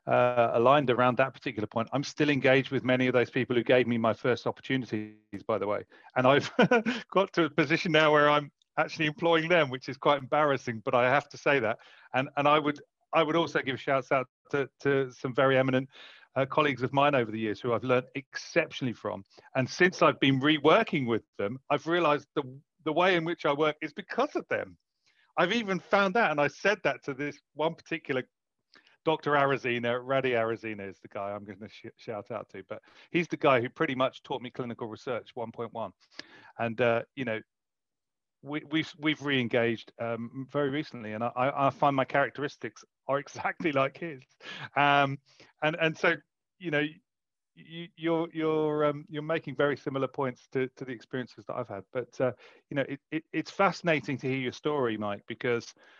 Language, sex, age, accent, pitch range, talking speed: English, male, 40-59, British, 125-155 Hz, 200 wpm